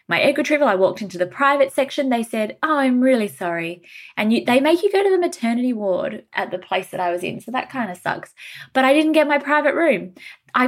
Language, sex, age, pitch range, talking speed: English, female, 20-39, 200-290 Hz, 245 wpm